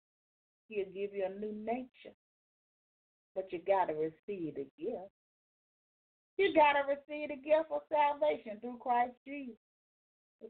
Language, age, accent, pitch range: English, 40-59, American, 200-285 Hz